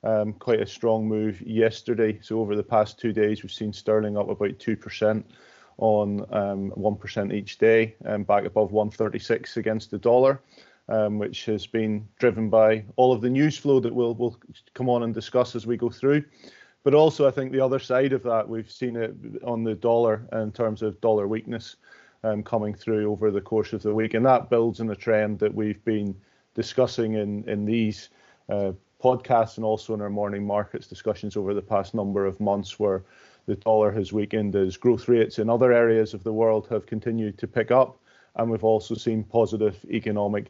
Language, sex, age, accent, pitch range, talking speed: English, male, 30-49, British, 105-115 Hz, 195 wpm